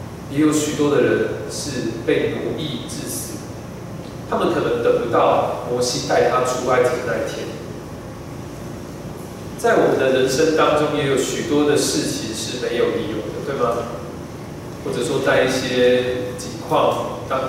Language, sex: Chinese, male